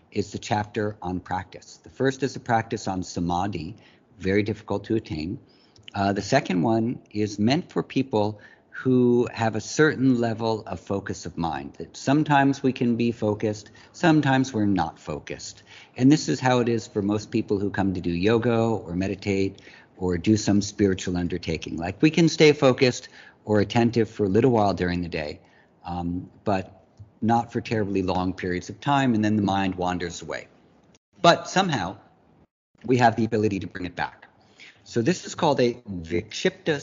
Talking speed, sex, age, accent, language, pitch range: 180 wpm, male, 50-69, American, English, 95-125 Hz